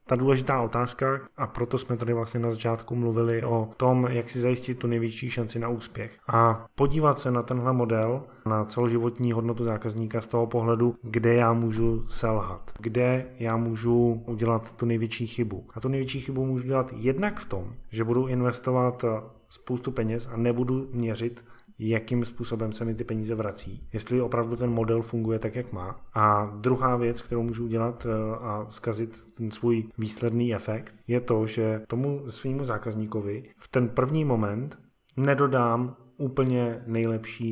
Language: Czech